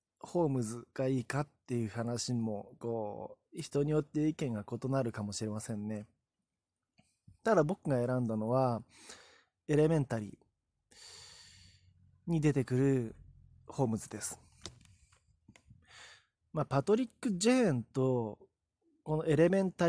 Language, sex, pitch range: Japanese, male, 110-175 Hz